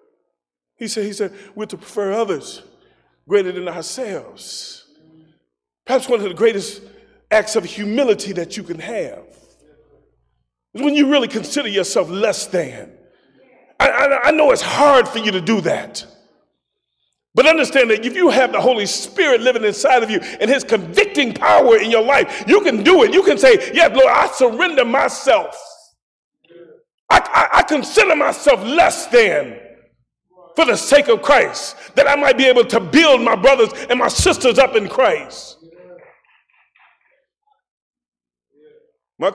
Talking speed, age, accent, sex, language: 155 wpm, 40-59, American, male, English